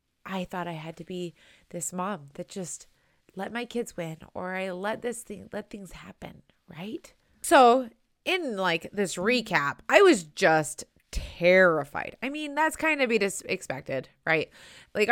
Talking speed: 165 wpm